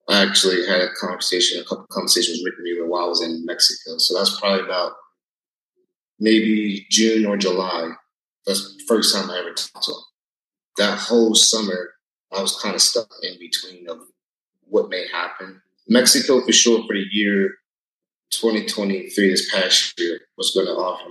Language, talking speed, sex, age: English, 175 wpm, male, 30-49